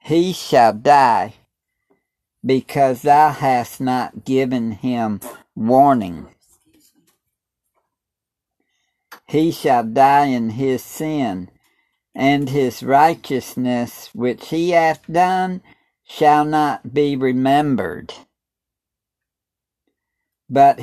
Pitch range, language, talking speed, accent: 125-150 Hz, English, 80 wpm, American